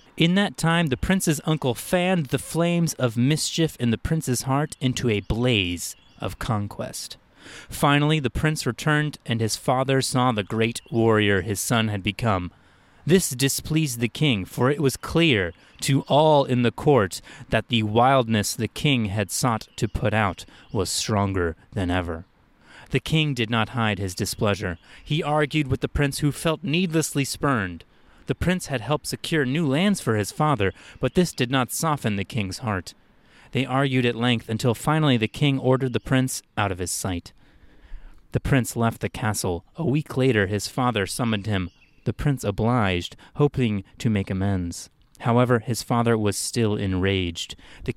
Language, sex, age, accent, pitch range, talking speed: English, male, 30-49, American, 105-145 Hz, 170 wpm